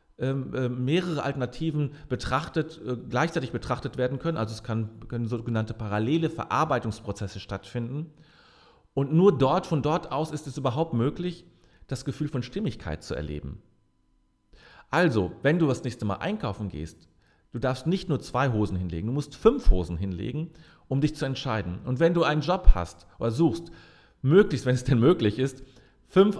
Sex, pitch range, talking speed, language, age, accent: male, 105-150 Hz, 160 wpm, German, 40-59, German